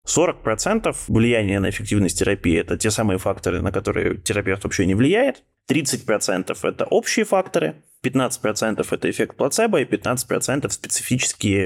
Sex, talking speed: male, 130 wpm